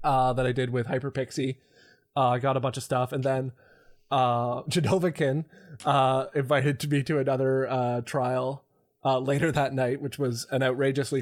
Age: 20-39